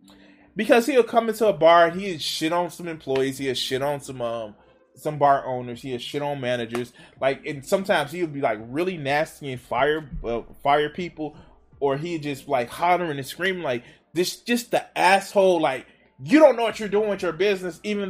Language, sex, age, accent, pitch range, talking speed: English, male, 20-39, American, 140-195 Hz, 200 wpm